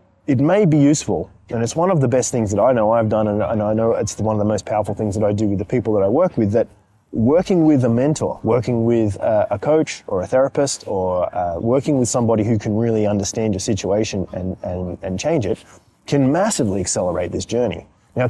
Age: 20-39